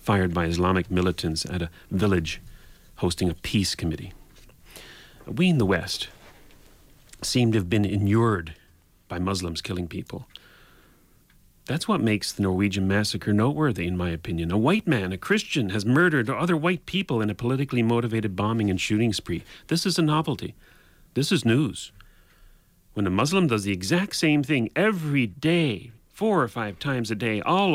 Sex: male